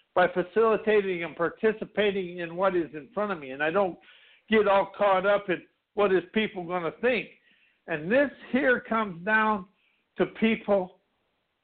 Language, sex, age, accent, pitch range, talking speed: English, male, 60-79, American, 180-220 Hz, 165 wpm